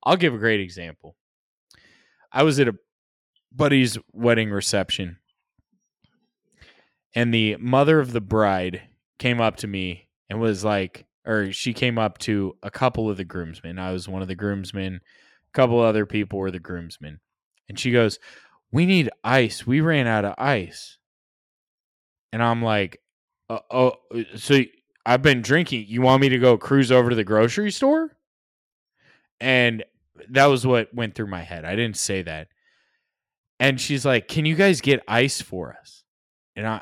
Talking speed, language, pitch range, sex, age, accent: 165 wpm, English, 100-130 Hz, male, 20-39, American